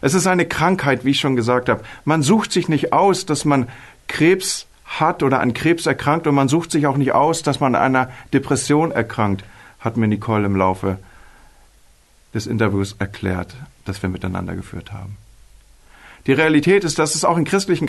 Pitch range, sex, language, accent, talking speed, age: 120-165 Hz, male, German, German, 190 wpm, 50-69